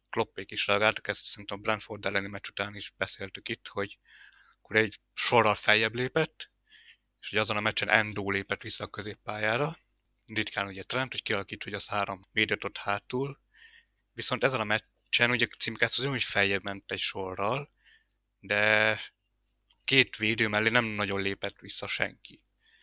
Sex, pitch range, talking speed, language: male, 100-115 Hz, 160 wpm, Hungarian